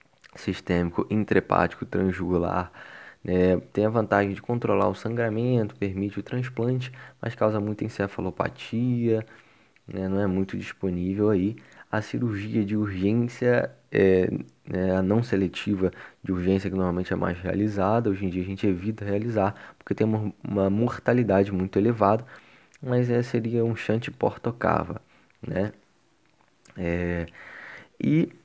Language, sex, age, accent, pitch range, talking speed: Portuguese, male, 20-39, Brazilian, 95-120 Hz, 130 wpm